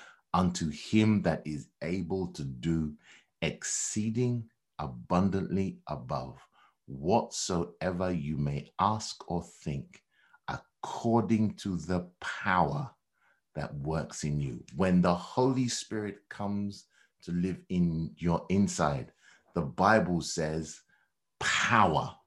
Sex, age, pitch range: male, 60-79, 75-100 Hz